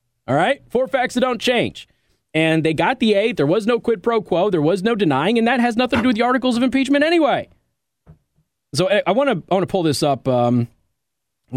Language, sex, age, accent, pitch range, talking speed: English, male, 30-49, American, 140-205 Hz, 225 wpm